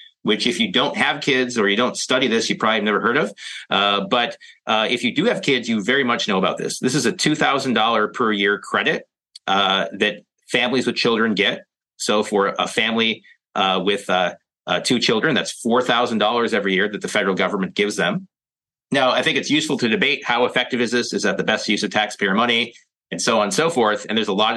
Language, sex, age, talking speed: English, male, 30-49, 225 wpm